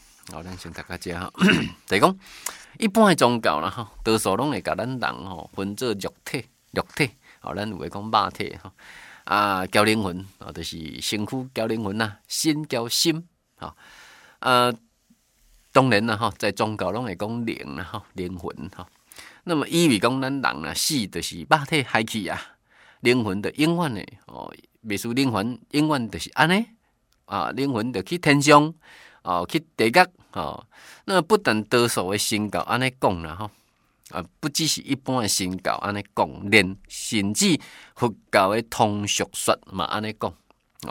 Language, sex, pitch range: Chinese, male, 100-150 Hz